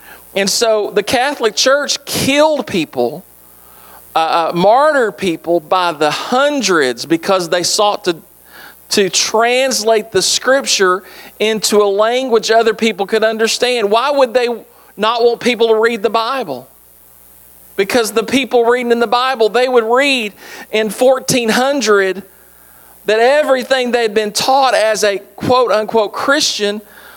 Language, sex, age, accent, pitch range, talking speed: English, male, 40-59, American, 195-245 Hz, 135 wpm